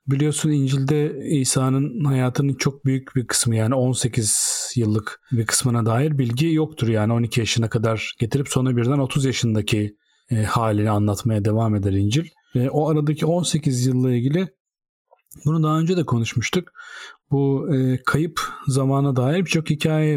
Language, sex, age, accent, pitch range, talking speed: Turkish, male, 40-59, native, 120-140 Hz, 140 wpm